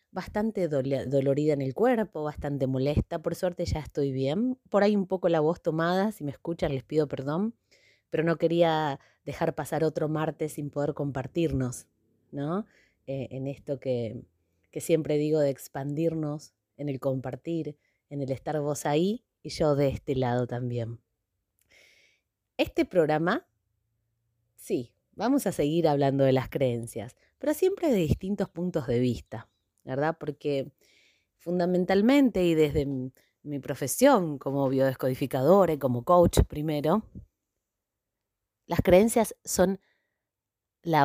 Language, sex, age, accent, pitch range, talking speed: Spanish, female, 20-39, Argentinian, 130-170 Hz, 135 wpm